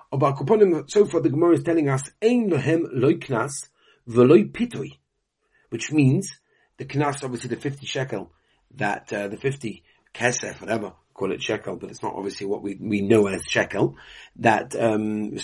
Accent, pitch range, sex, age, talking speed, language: British, 115-160 Hz, male, 40-59, 155 wpm, English